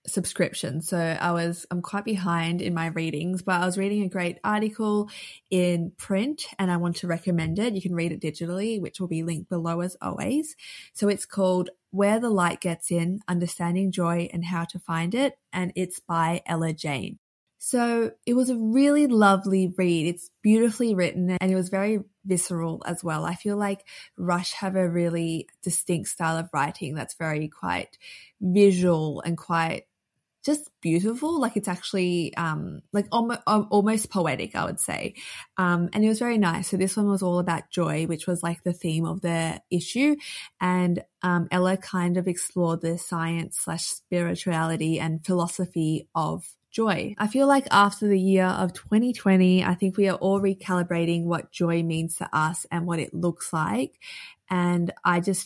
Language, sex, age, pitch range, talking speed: English, female, 20-39, 170-200 Hz, 180 wpm